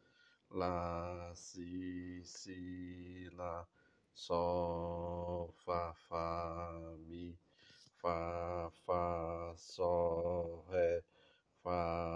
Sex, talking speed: male, 65 wpm